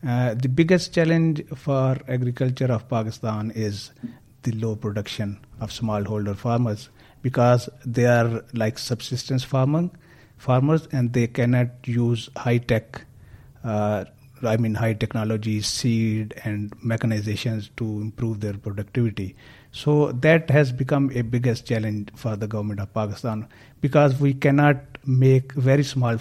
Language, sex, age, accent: English, male, 50-69, Indian